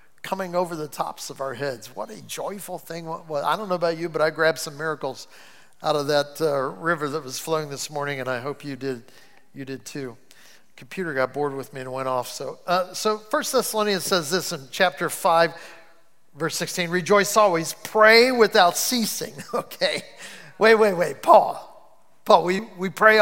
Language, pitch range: English, 165-215 Hz